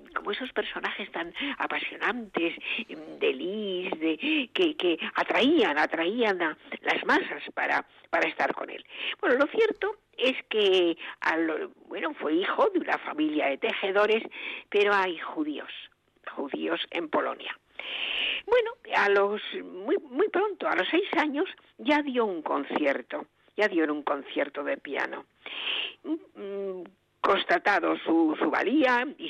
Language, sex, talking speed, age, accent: Spanish, female, 140 wpm, 50-69, Spanish